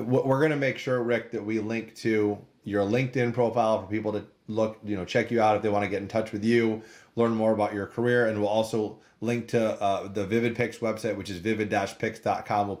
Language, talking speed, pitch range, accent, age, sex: English, 230 wpm, 105-120 Hz, American, 30-49, male